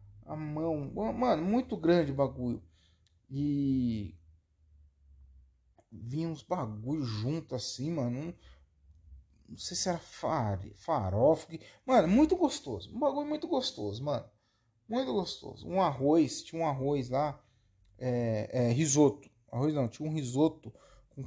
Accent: Brazilian